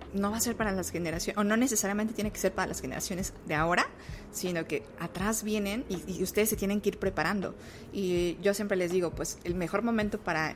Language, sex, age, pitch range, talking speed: Spanish, female, 20-39, 170-205 Hz, 225 wpm